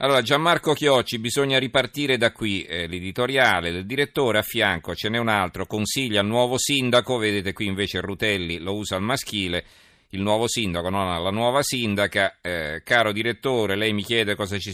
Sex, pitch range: male, 95-120 Hz